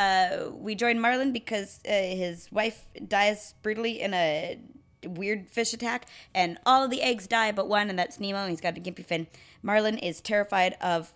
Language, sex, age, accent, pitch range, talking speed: English, female, 20-39, American, 185-230 Hz, 190 wpm